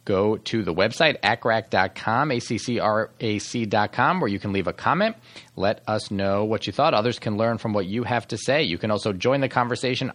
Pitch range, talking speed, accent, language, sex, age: 100-130 Hz, 195 wpm, American, English, male, 40-59